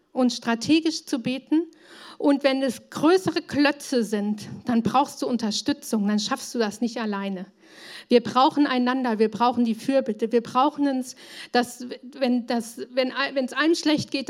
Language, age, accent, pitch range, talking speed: German, 50-69, German, 230-310 Hz, 160 wpm